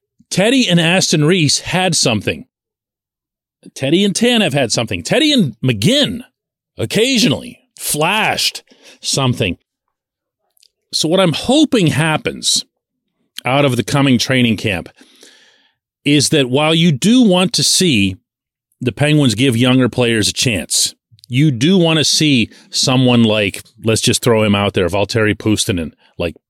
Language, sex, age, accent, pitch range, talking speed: English, male, 40-59, American, 115-165 Hz, 135 wpm